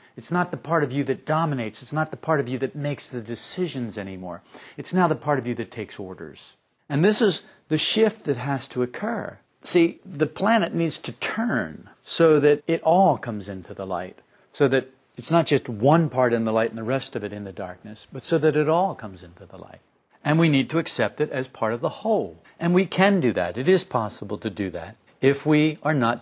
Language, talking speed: English, 240 wpm